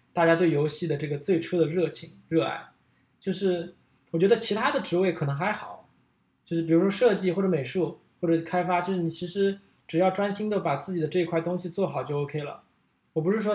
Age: 20-39